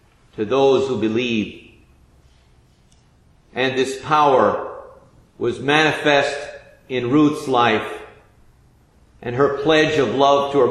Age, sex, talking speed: 50-69, male, 105 wpm